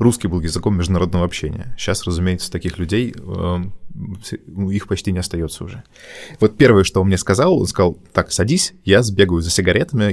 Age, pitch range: 20-39, 90-110 Hz